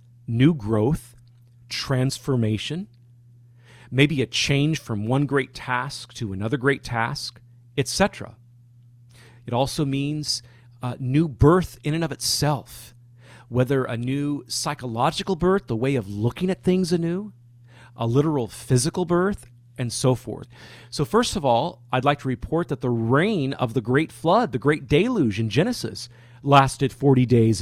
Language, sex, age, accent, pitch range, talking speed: English, male, 40-59, American, 120-145 Hz, 145 wpm